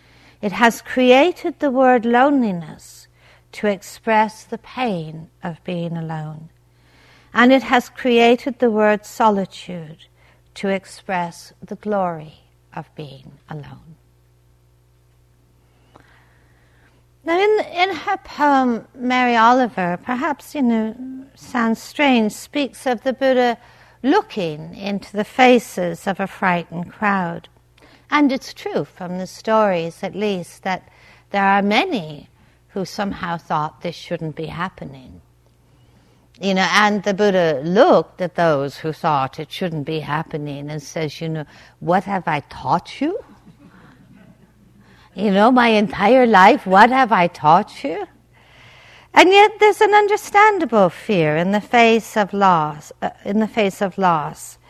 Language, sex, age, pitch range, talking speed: English, female, 60-79, 155-240 Hz, 130 wpm